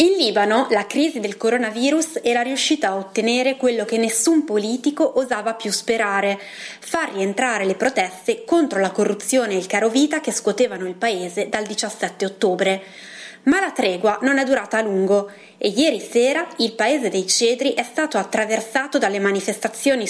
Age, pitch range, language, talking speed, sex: 20-39, 200-255 Hz, Italian, 160 wpm, female